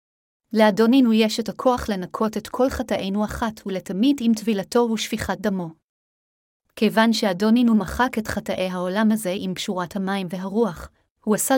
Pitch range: 200-230 Hz